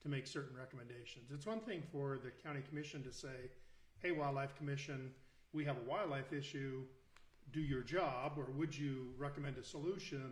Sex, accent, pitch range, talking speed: male, American, 130-155 Hz, 175 wpm